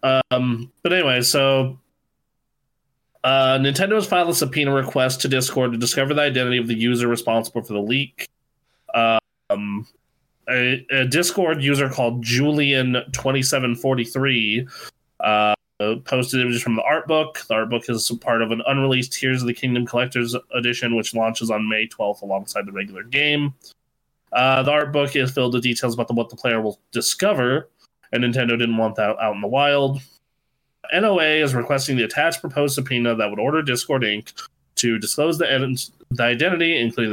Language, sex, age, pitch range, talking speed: English, male, 20-39, 115-135 Hz, 165 wpm